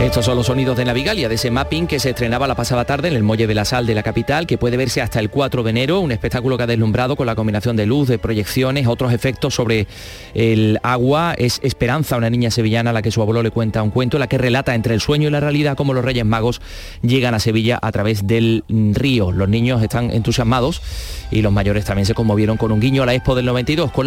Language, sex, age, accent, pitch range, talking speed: Spanish, male, 30-49, Spanish, 115-145 Hz, 255 wpm